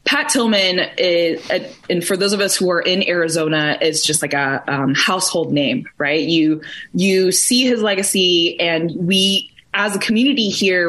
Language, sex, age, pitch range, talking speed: English, female, 20-39, 160-200 Hz, 175 wpm